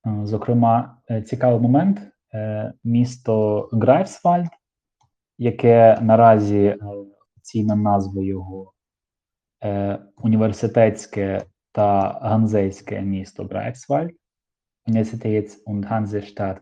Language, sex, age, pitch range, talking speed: Ukrainian, male, 20-39, 100-120 Hz, 65 wpm